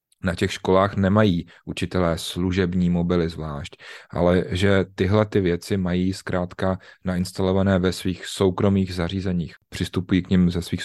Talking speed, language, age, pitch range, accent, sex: 140 wpm, Czech, 30-49, 90-105 Hz, native, male